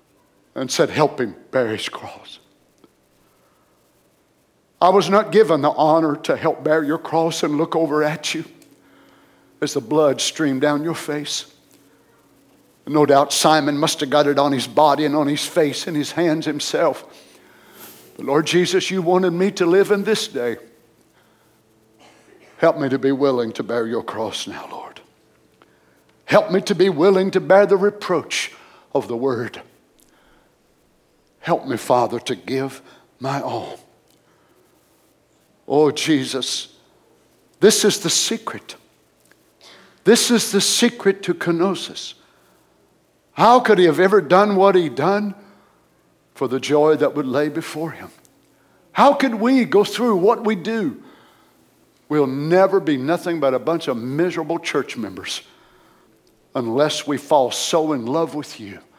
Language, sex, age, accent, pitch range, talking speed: English, male, 60-79, American, 145-195 Hz, 145 wpm